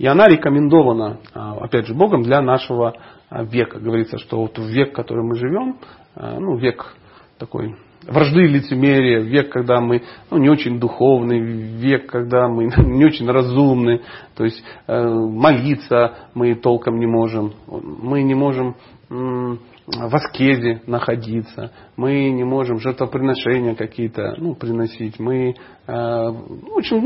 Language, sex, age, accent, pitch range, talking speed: Russian, male, 40-59, native, 115-150 Hz, 135 wpm